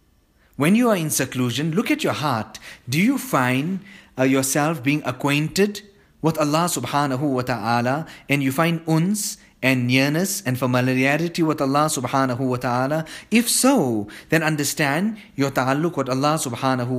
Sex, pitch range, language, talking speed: male, 135-180 Hz, English, 150 wpm